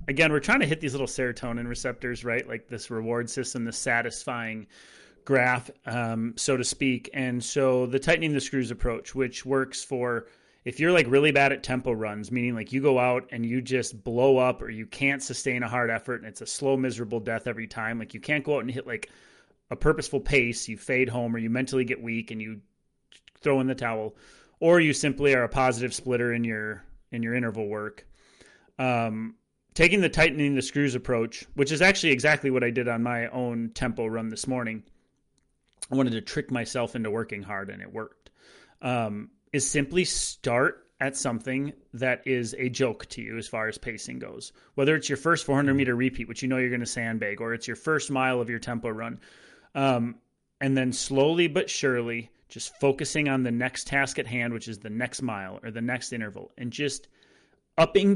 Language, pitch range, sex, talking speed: English, 115-135 Hz, male, 205 wpm